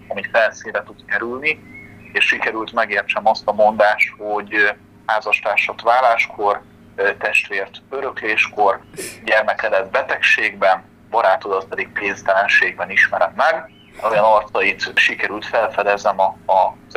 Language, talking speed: Hungarian, 105 wpm